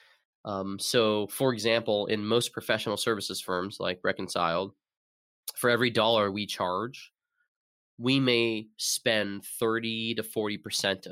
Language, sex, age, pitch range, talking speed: English, male, 20-39, 95-120 Hz, 120 wpm